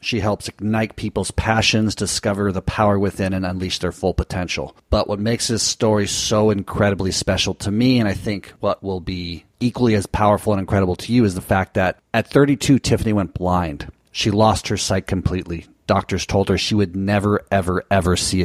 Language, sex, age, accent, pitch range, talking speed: English, male, 40-59, American, 95-110 Hz, 195 wpm